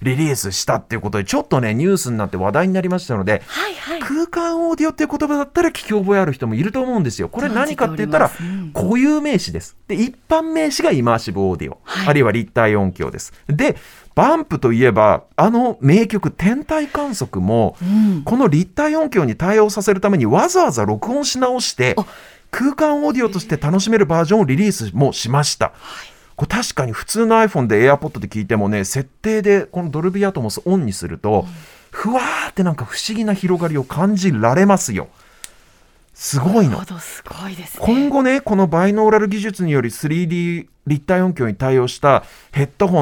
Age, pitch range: 40-59, 130-220 Hz